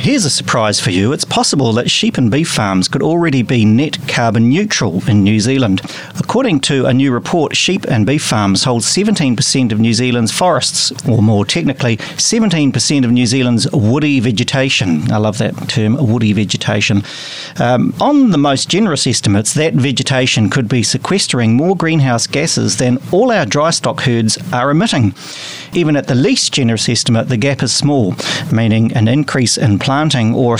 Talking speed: 175 wpm